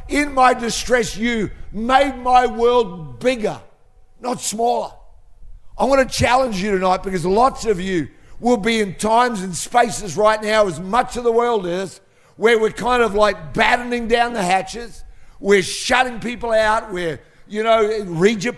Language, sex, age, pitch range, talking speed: English, male, 50-69, 190-240 Hz, 170 wpm